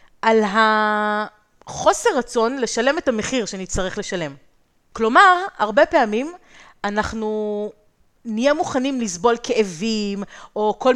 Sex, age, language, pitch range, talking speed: female, 30-49, Hebrew, 200-255 Hz, 100 wpm